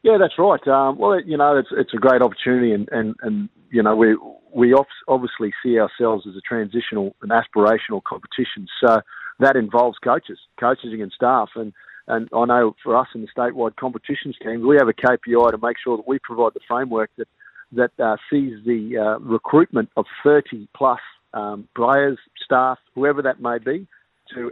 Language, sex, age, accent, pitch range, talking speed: English, male, 50-69, Australian, 115-135 Hz, 190 wpm